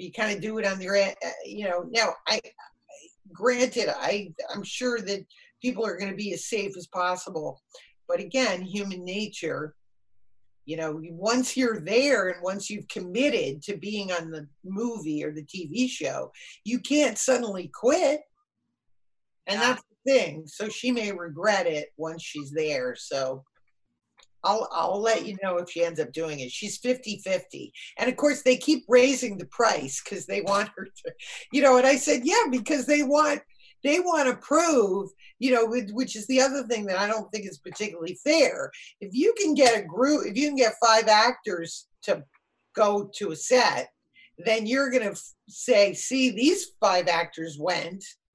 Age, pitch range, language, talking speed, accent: 50-69, 180-255 Hz, English, 175 wpm, American